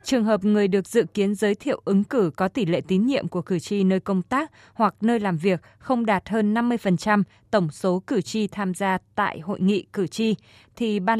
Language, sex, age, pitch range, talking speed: Vietnamese, female, 20-39, 180-220 Hz, 225 wpm